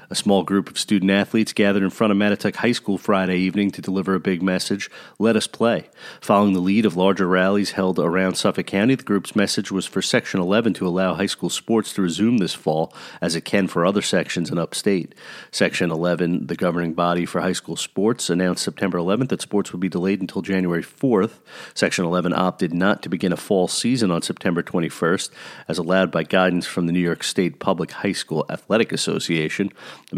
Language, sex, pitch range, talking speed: English, male, 90-105 Hz, 205 wpm